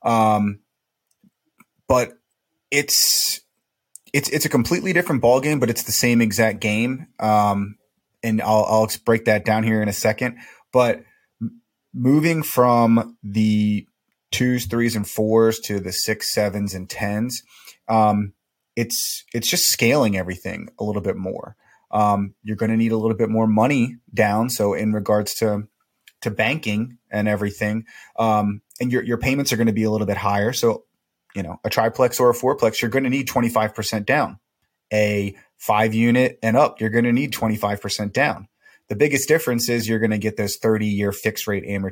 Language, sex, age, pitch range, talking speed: English, male, 30-49, 105-120 Hz, 175 wpm